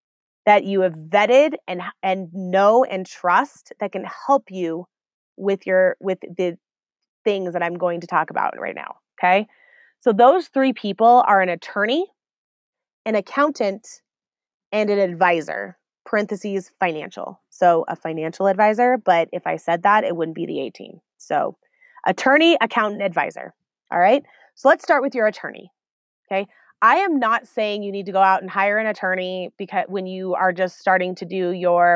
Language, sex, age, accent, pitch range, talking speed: English, female, 20-39, American, 185-240 Hz, 170 wpm